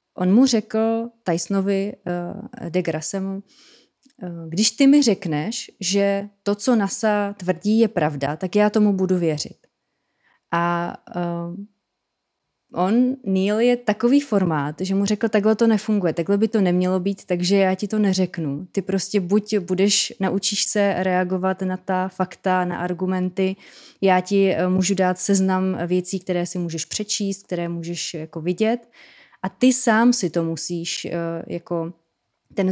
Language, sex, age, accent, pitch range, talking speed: Czech, female, 20-39, native, 180-210 Hz, 145 wpm